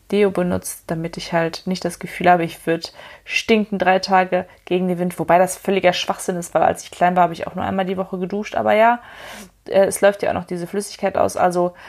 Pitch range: 180-205 Hz